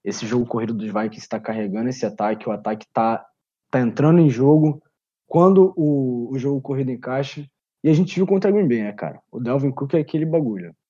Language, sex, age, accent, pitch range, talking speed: Portuguese, male, 20-39, Brazilian, 120-155 Hz, 210 wpm